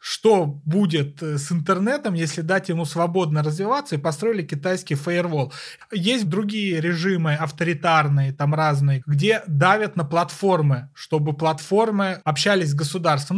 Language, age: Russian, 30-49